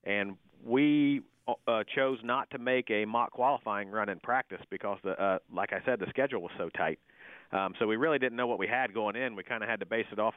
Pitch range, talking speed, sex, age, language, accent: 105-125 Hz, 245 wpm, male, 40-59, English, American